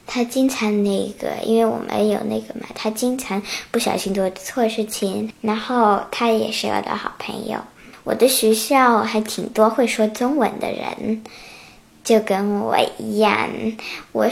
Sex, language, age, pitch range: male, Chinese, 10-29, 205-240 Hz